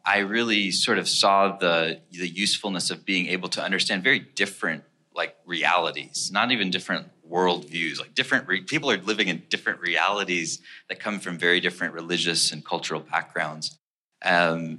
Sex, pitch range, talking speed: male, 85-95 Hz, 160 wpm